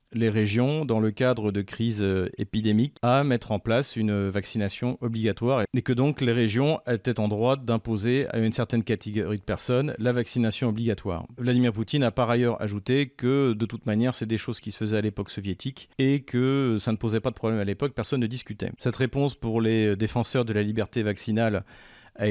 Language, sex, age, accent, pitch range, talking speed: French, male, 40-59, French, 105-125 Hz, 200 wpm